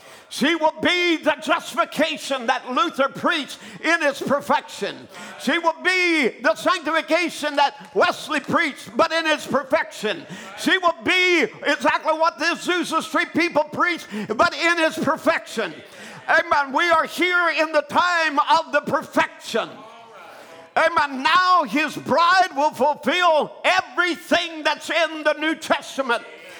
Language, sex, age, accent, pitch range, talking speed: English, male, 50-69, American, 285-330 Hz, 135 wpm